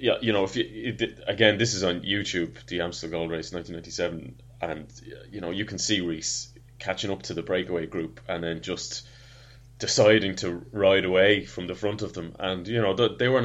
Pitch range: 90-120 Hz